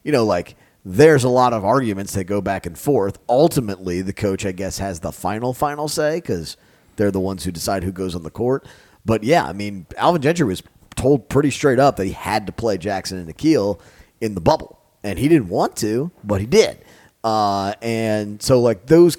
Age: 30-49